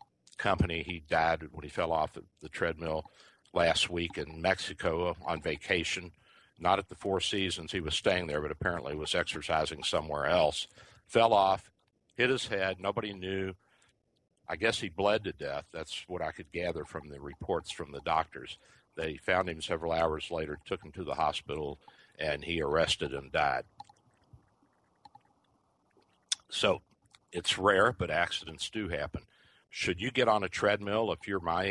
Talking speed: 165 wpm